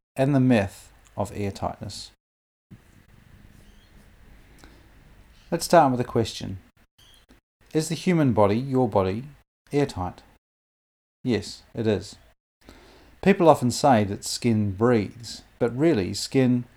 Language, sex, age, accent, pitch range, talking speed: English, male, 30-49, Australian, 100-125 Hz, 105 wpm